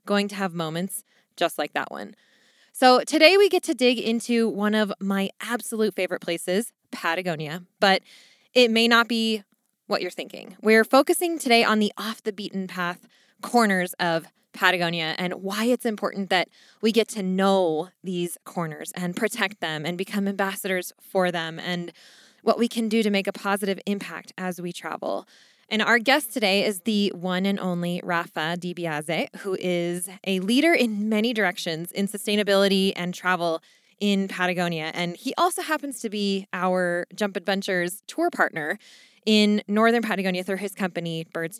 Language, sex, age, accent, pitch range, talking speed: English, female, 20-39, American, 180-230 Hz, 165 wpm